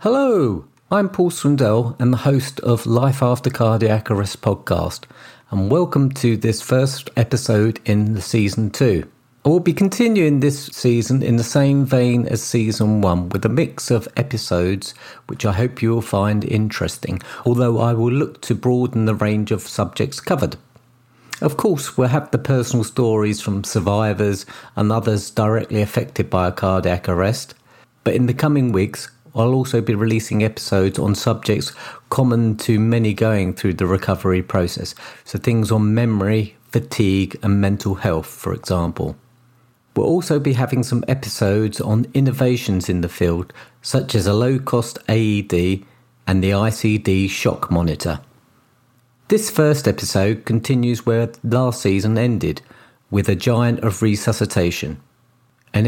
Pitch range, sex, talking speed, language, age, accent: 100-125 Hz, male, 150 wpm, English, 40-59, British